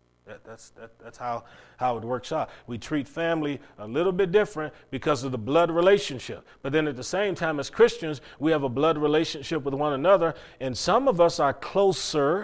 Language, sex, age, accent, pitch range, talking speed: English, male, 40-59, American, 110-170 Hz, 200 wpm